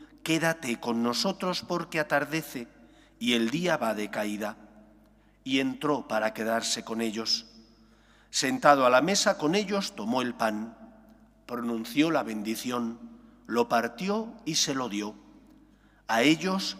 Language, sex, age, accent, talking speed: English, male, 40-59, Spanish, 130 wpm